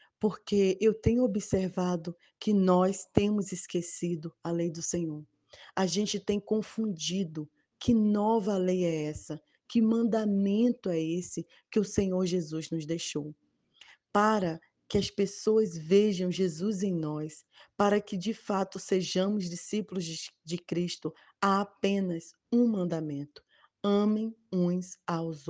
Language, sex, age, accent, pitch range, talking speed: Portuguese, female, 20-39, Brazilian, 175-210 Hz, 125 wpm